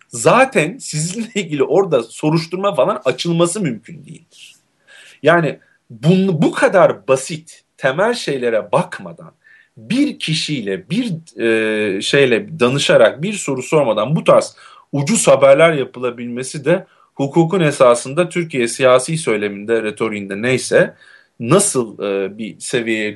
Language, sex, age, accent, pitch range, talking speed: Turkish, male, 40-59, native, 120-175 Hz, 110 wpm